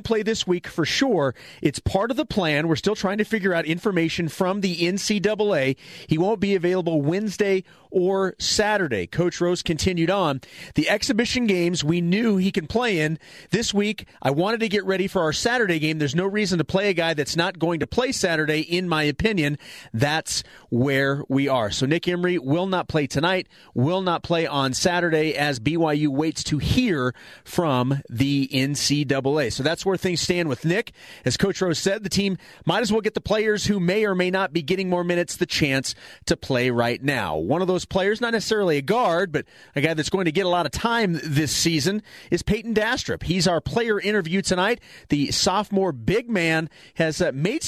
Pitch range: 155-195 Hz